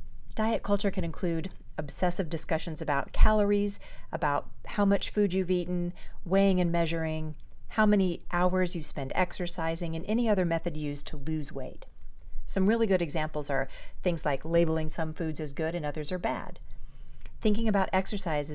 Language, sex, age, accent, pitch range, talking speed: English, female, 40-59, American, 145-180 Hz, 160 wpm